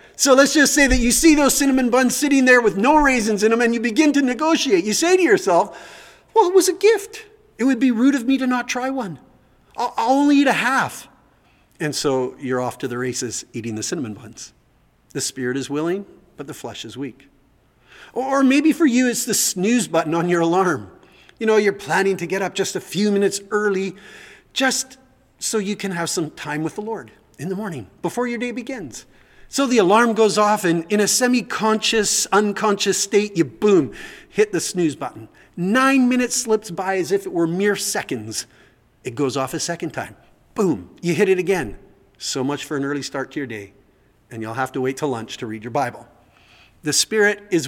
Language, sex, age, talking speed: English, male, 40-59, 210 wpm